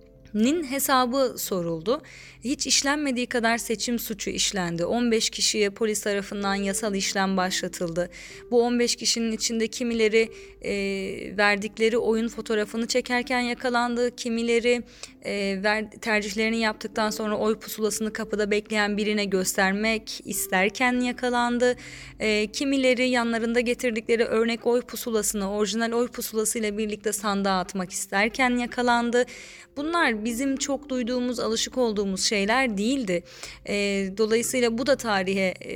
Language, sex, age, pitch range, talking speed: Turkish, female, 30-49, 205-250 Hz, 110 wpm